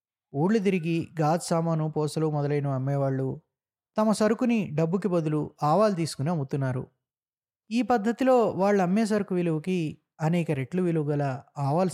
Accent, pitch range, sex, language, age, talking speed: native, 140-190 Hz, male, Telugu, 20-39, 115 wpm